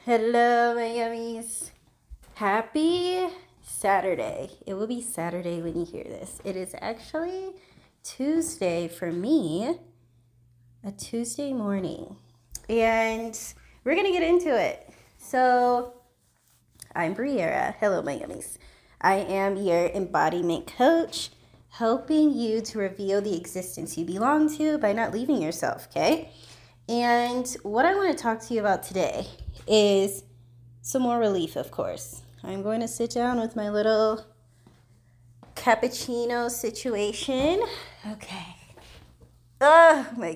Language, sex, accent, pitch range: English, female, American, 170-250 Hz